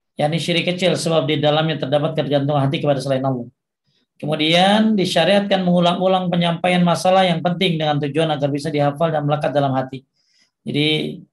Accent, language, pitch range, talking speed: native, Indonesian, 145-180 Hz, 160 wpm